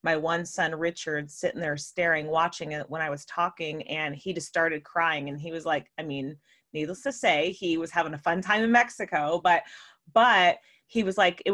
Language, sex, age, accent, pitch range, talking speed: English, female, 30-49, American, 160-190 Hz, 215 wpm